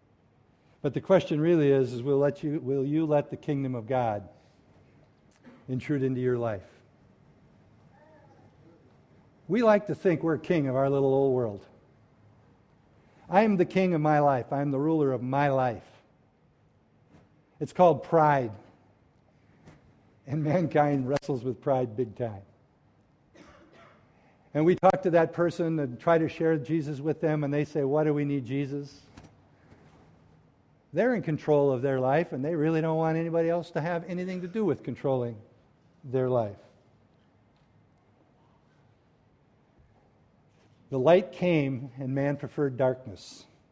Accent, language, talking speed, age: American, English, 145 wpm, 60-79